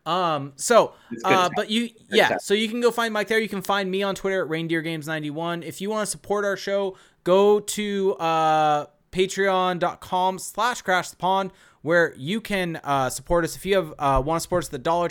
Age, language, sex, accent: 20-39, English, male, American